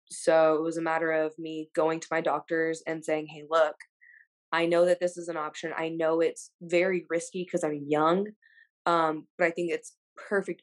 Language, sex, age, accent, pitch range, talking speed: English, female, 20-39, American, 155-175 Hz, 205 wpm